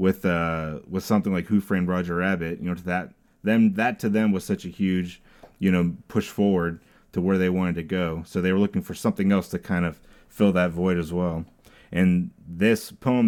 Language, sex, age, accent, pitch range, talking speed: English, male, 30-49, American, 85-100 Hz, 220 wpm